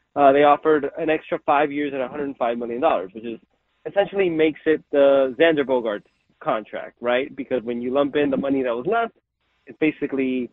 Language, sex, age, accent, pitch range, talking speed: English, male, 30-49, American, 140-170 Hz, 180 wpm